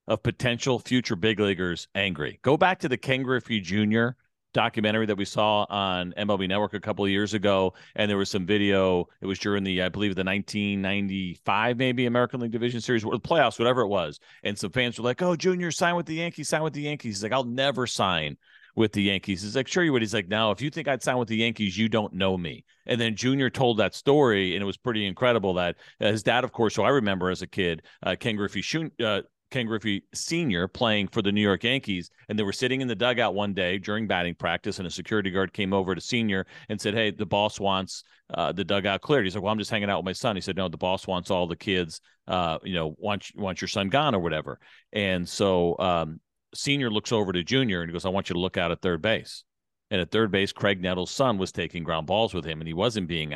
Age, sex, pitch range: 40-59, male, 95-120 Hz